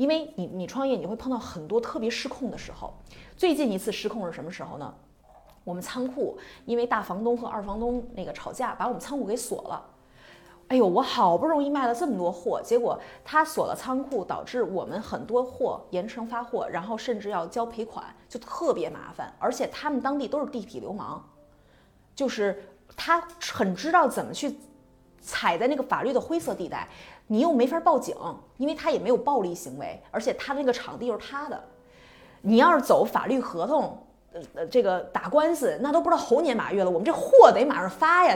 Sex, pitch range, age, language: female, 220-300 Hz, 20-39, Chinese